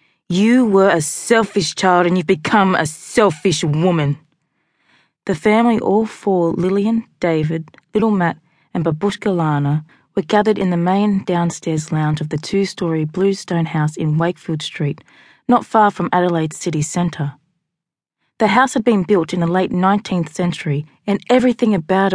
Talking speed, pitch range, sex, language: 155 wpm, 160-205 Hz, female, English